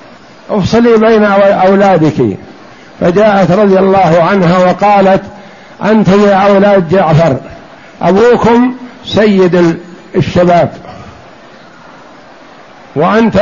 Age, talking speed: 60-79, 70 wpm